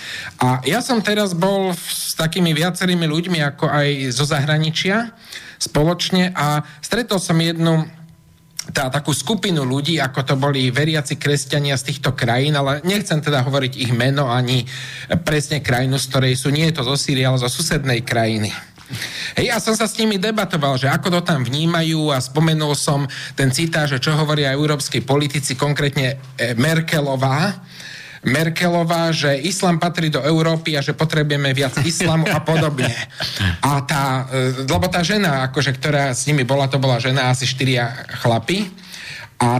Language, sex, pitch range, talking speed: Slovak, male, 140-175 Hz, 160 wpm